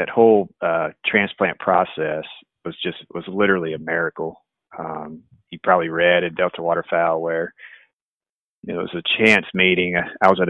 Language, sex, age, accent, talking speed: English, male, 40-59, American, 160 wpm